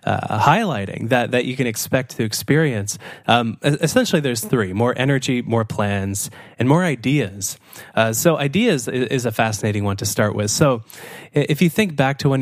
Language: English